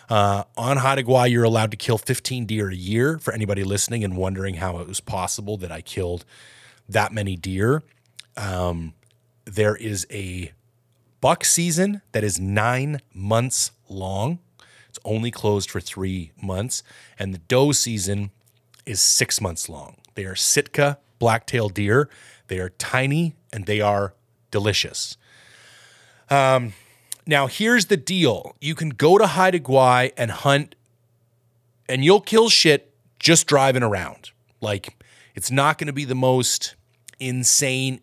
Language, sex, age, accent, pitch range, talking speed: English, male, 30-49, American, 105-130 Hz, 145 wpm